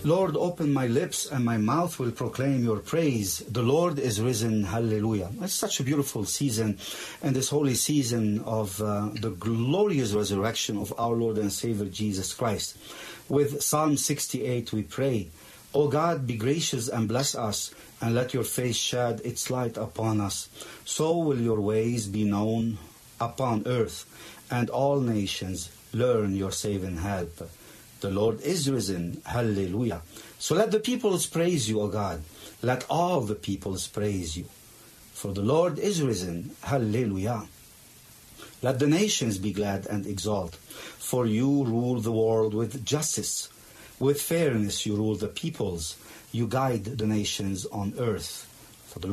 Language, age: English, 50-69